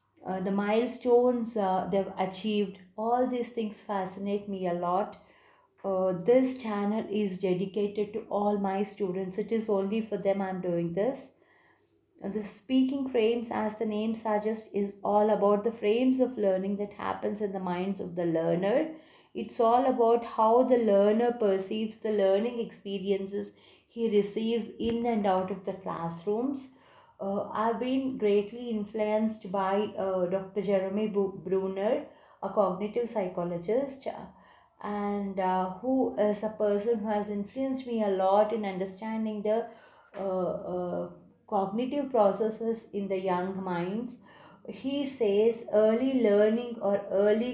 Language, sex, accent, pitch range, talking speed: English, female, Indian, 195-225 Hz, 145 wpm